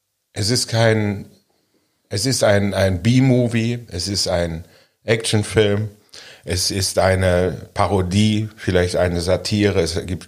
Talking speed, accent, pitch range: 125 wpm, German, 90-105 Hz